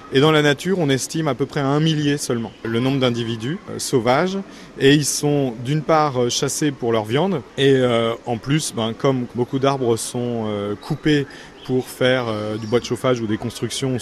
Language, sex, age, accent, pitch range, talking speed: French, male, 30-49, French, 120-145 Hz, 210 wpm